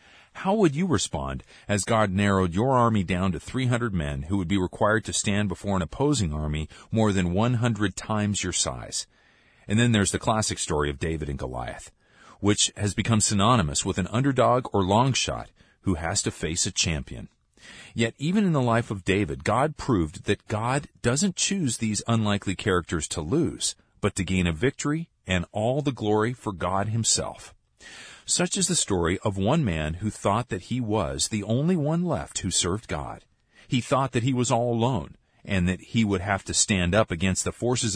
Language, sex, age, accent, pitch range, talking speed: English, male, 40-59, American, 95-120 Hz, 195 wpm